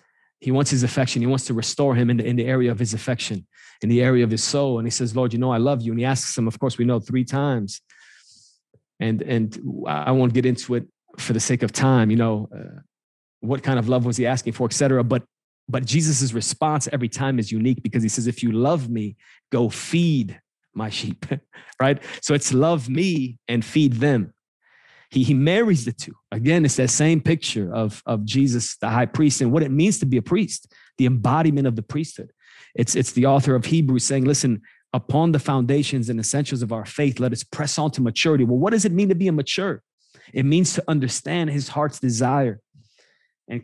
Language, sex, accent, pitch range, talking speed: English, male, American, 120-145 Hz, 220 wpm